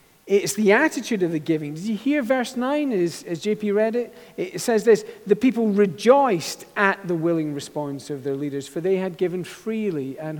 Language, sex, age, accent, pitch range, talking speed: English, male, 50-69, British, 145-190 Hz, 200 wpm